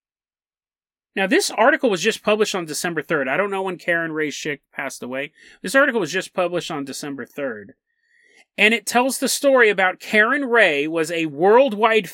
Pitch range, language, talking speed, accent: 175-255 Hz, English, 185 wpm, American